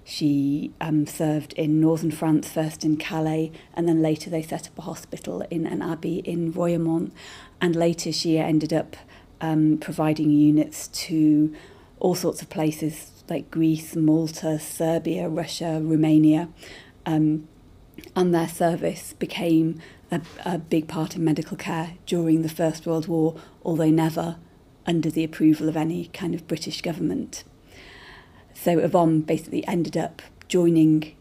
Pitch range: 155-165 Hz